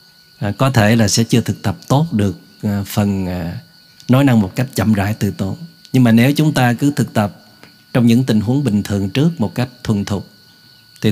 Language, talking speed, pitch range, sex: Vietnamese, 220 wpm, 110-140 Hz, male